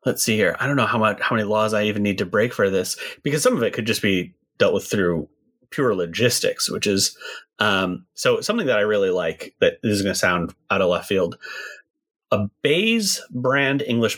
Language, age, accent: English, 30-49, American